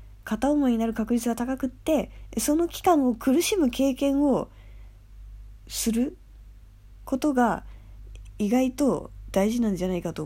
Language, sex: Japanese, female